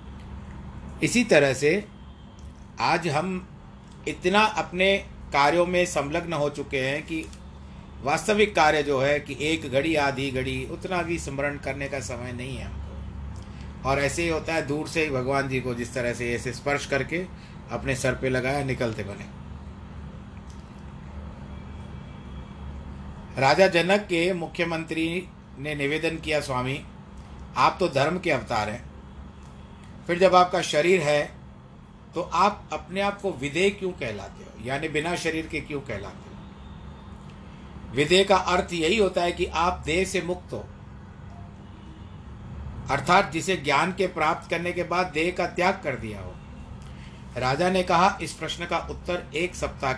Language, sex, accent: Hindi, male, native